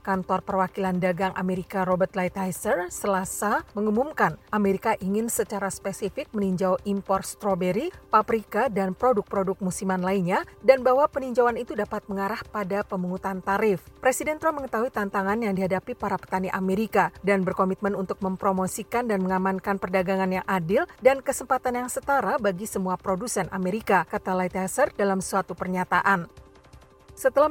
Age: 40-59